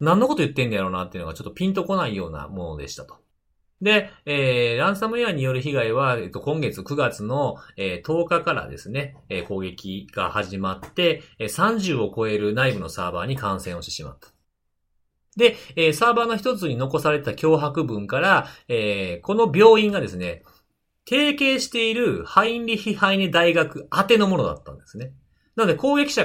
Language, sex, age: Japanese, male, 40-59